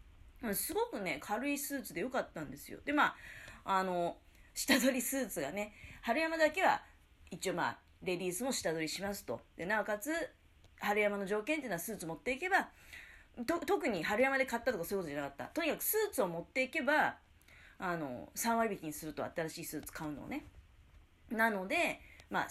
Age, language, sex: 30-49, Japanese, female